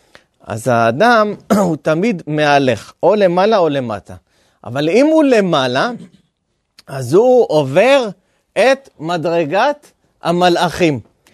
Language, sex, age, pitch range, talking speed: Hebrew, male, 30-49, 140-200 Hz, 100 wpm